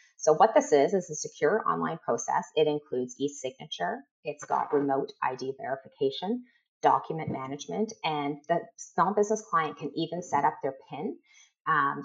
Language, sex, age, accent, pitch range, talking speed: English, female, 30-49, American, 140-195 Hz, 155 wpm